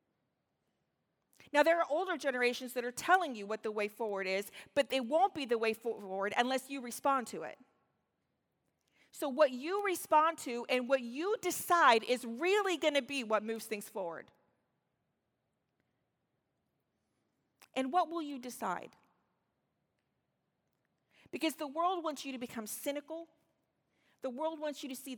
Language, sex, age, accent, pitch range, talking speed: English, female, 40-59, American, 225-290 Hz, 150 wpm